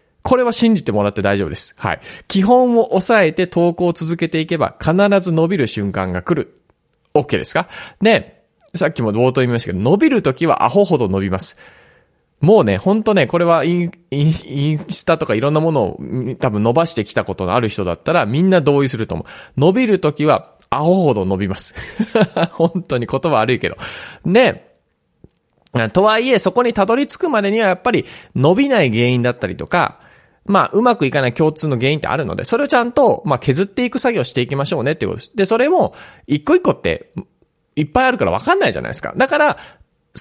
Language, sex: Japanese, male